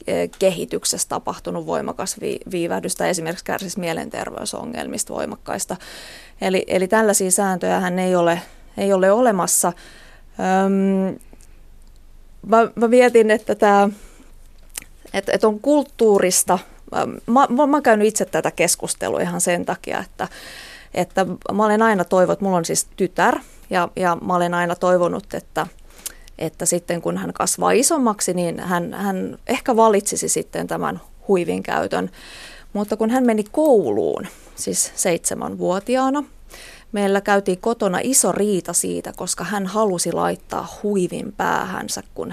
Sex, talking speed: female, 120 wpm